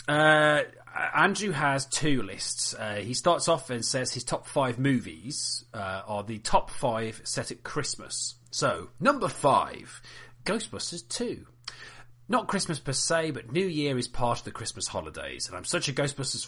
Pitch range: 120-145 Hz